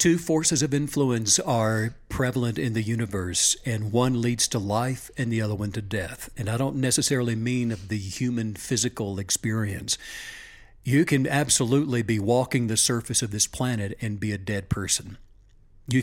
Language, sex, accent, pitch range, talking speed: English, male, American, 110-145 Hz, 170 wpm